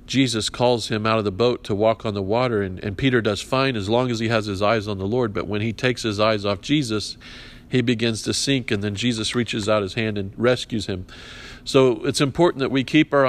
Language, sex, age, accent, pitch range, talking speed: English, male, 50-69, American, 105-125 Hz, 255 wpm